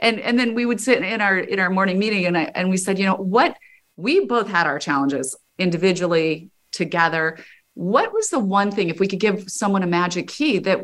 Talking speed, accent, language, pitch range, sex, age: 225 wpm, American, English, 170-225 Hz, female, 30-49